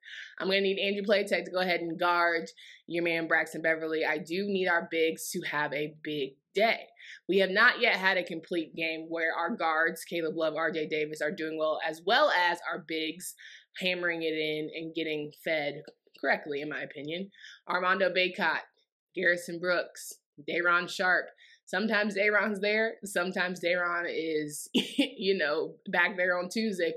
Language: English